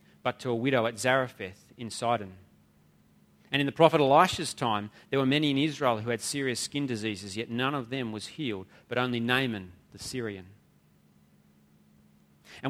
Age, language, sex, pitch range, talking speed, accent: 30-49, English, male, 110-145 Hz, 170 wpm, Australian